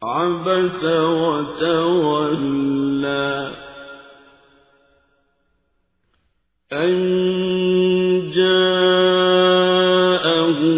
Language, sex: Filipino, male